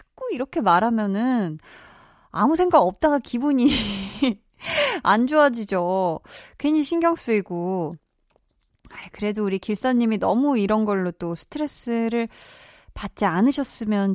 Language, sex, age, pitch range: Korean, female, 20-39, 185-255 Hz